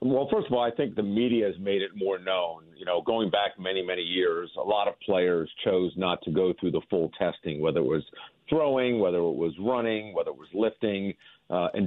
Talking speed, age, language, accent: 235 wpm, 50-69, English, American